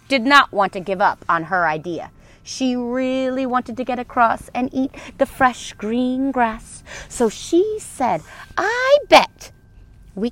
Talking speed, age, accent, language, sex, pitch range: 155 wpm, 40-59, American, English, female, 205-290 Hz